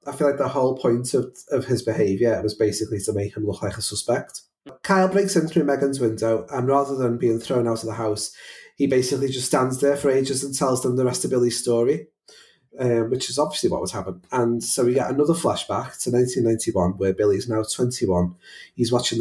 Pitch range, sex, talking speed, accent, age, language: 105-130 Hz, male, 220 wpm, British, 30-49, English